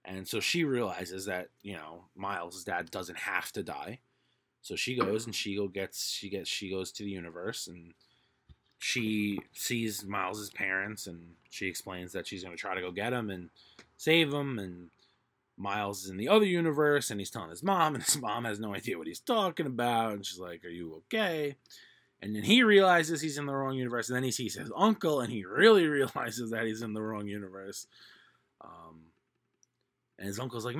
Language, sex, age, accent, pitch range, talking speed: English, male, 20-39, American, 95-140 Hz, 205 wpm